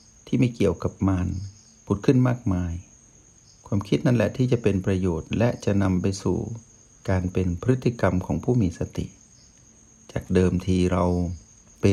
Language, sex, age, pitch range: Thai, male, 60-79, 95-120 Hz